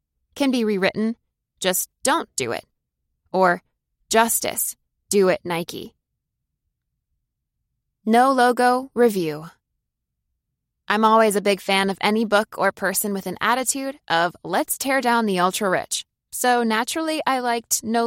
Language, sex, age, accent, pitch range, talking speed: English, female, 20-39, American, 190-245 Hz, 130 wpm